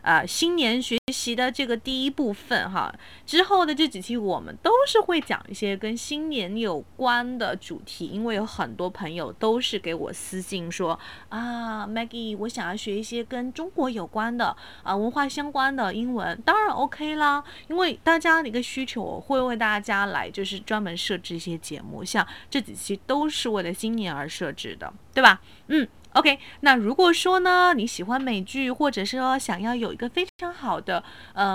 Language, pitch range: Chinese, 205-295 Hz